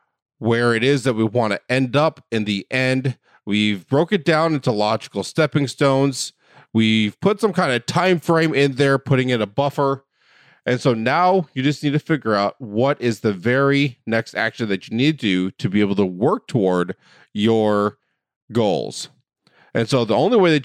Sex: male